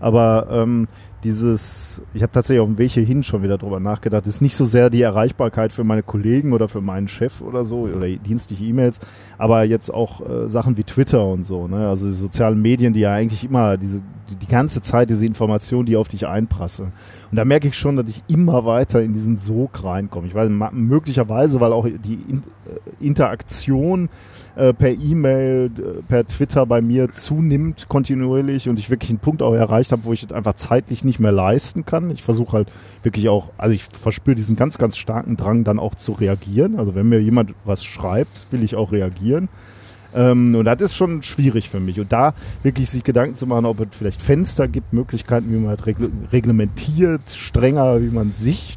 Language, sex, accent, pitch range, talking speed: German, male, German, 105-125 Hz, 200 wpm